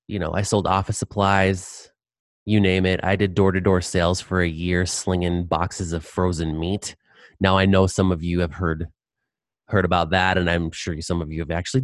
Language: English